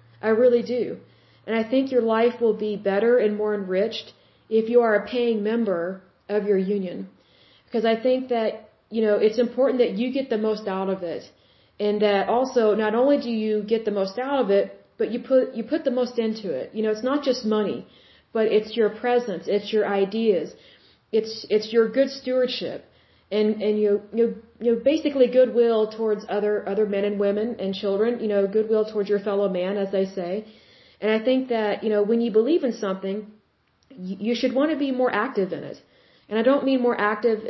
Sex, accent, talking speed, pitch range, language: female, American, 210 wpm, 205-240 Hz, Hindi